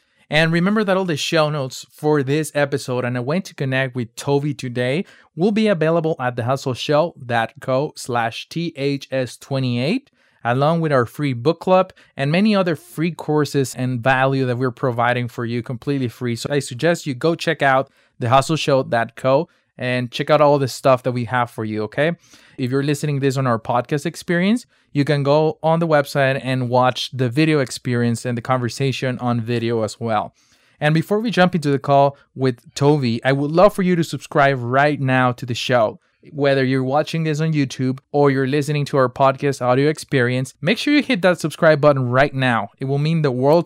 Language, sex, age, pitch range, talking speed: English, male, 20-39, 125-155 Hz, 195 wpm